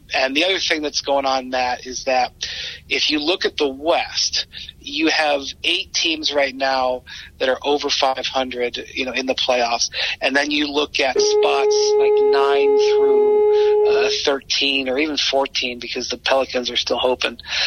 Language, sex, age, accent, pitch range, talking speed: English, male, 40-59, American, 125-150 Hz, 175 wpm